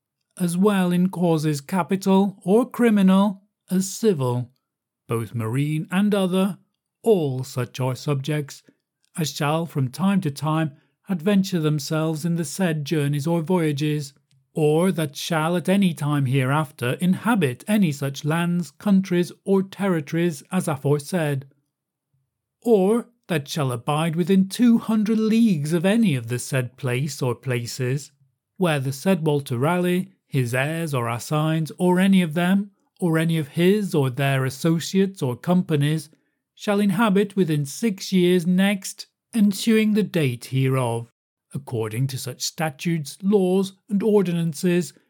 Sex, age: male, 40-59